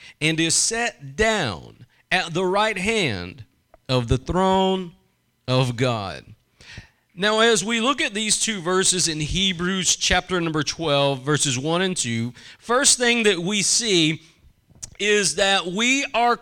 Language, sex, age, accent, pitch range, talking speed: English, male, 40-59, American, 160-220 Hz, 145 wpm